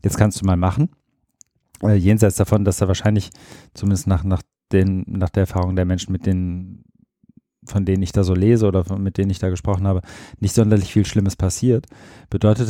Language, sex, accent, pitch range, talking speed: German, male, German, 95-105 Hz, 170 wpm